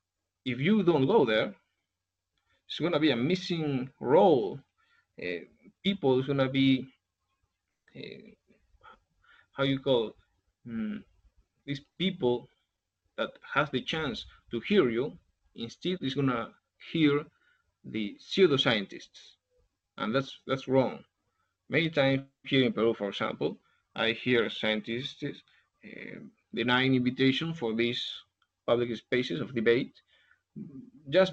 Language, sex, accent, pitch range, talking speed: English, male, Spanish, 115-145 Hz, 120 wpm